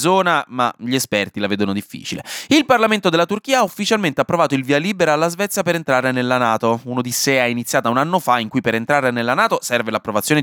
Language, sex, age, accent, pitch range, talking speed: Italian, male, 20-39, native, 115-185 Hz, 215 wpm